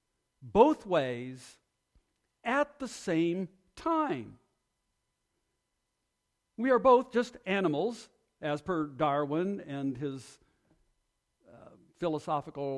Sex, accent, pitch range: male, American, 130-210 Hz